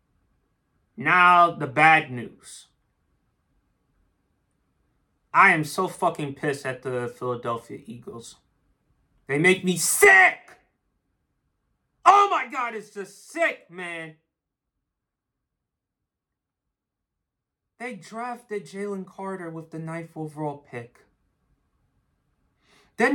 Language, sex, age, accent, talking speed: English, male, 30-49, American, 90 wpm